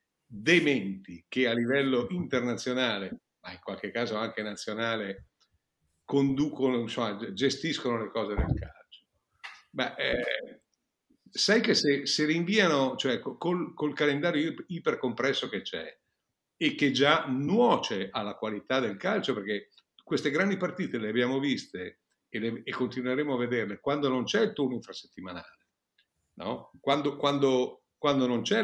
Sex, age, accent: male, 50-69, native